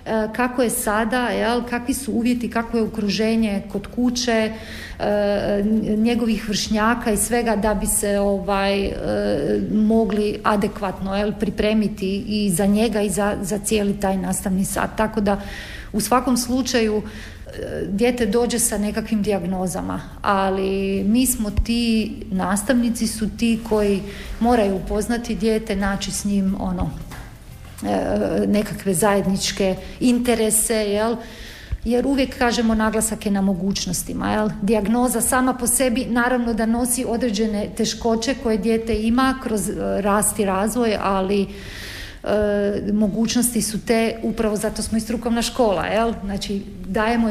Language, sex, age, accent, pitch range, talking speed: Croatian, female, 40-59, native, 200-230 Hz, 125 wpm